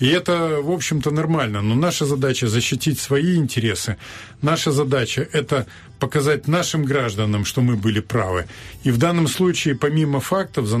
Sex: male